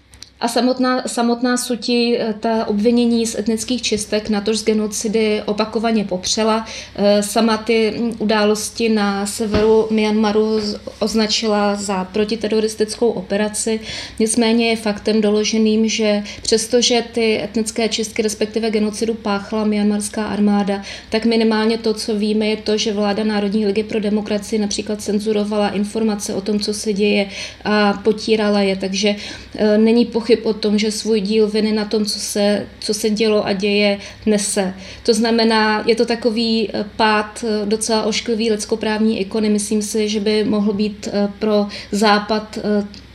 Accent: native